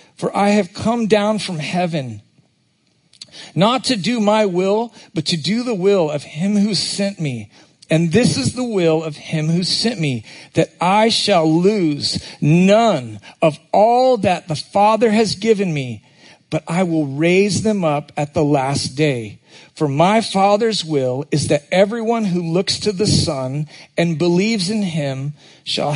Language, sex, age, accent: English, male, 40-59, American